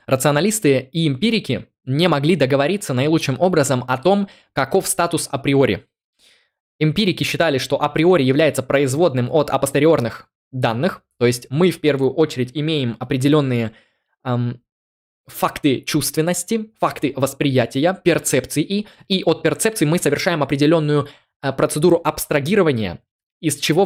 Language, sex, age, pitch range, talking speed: Russian, male, 20-39, 140-170 Hz, 120 wpm